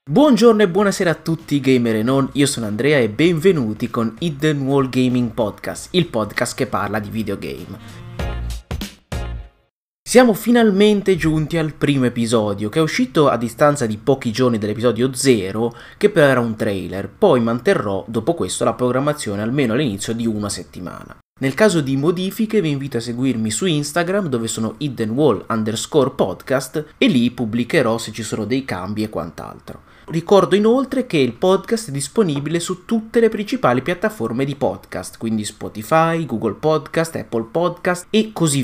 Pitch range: 115-165 Hz